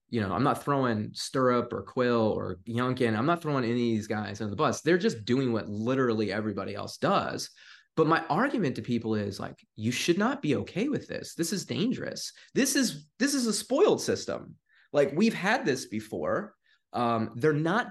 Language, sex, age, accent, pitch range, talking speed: English, male, 20-39, American, 120-190 Hz, 200 wpm